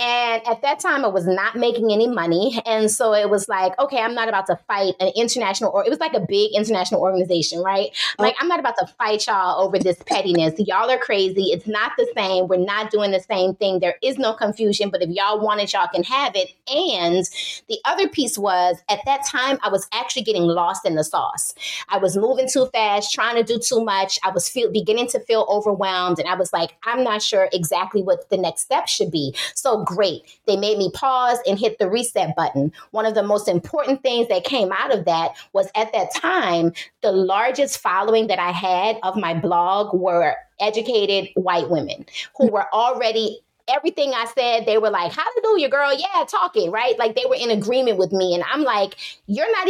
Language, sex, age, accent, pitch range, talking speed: English, female, 20-39, American, 190-240 Hz, 220 wpm